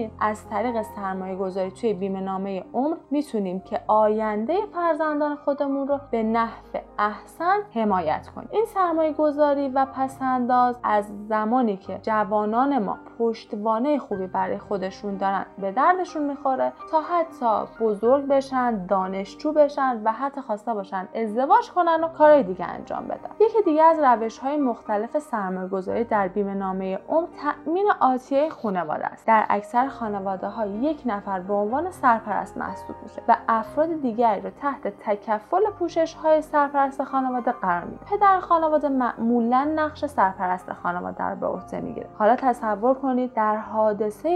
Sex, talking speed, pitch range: female, 140 wpm, 205-285 Hz